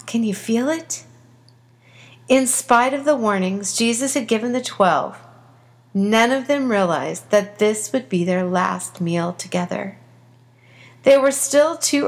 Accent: American